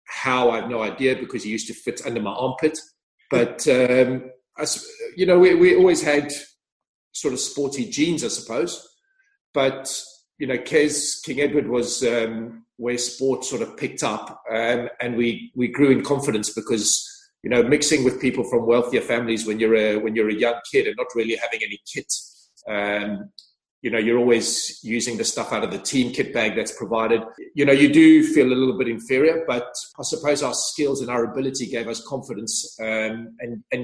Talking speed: 195 wpm